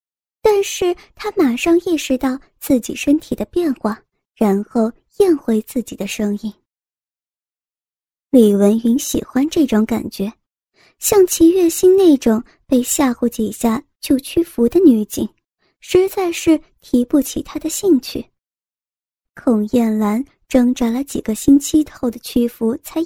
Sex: male